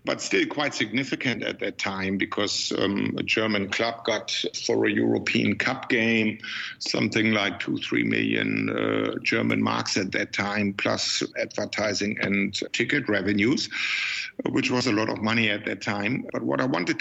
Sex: male